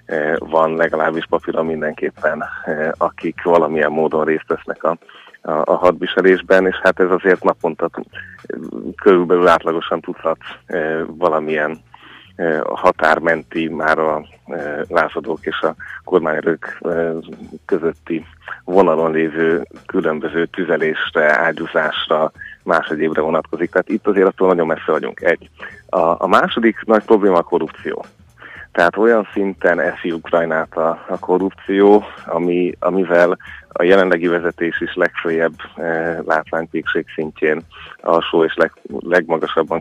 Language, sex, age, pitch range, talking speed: Hungarian, male, 30-49, 80-90 Hz, 115 wpm